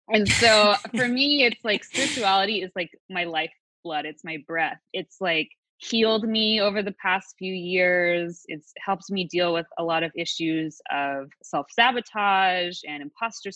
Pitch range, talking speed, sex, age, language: 165-210 Hz, 160 wpm, female, 20-39, English